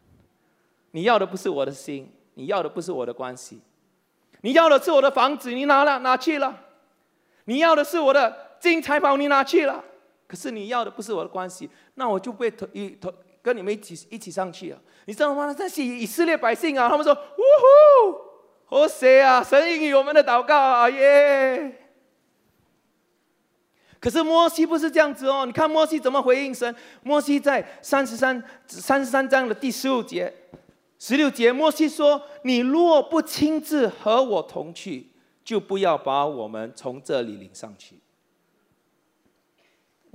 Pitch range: 240-305 Hz